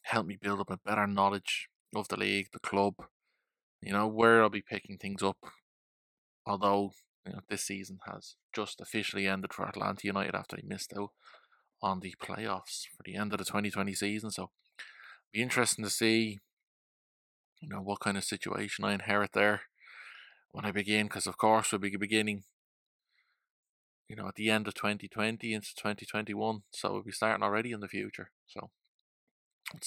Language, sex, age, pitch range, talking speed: English, male, 20-39, 100-110 Hz, 180 wpm